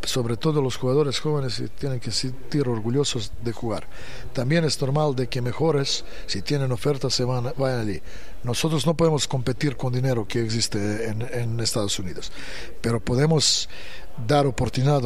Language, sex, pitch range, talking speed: Spanish, male, 120-145 Hz, 155 wpm